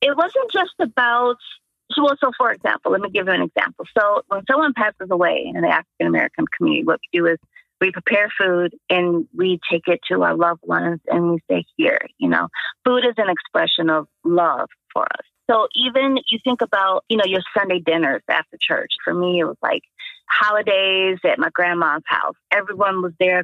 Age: 30-49